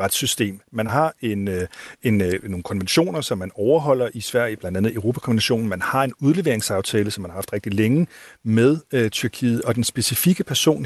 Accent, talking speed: native, 155 wpm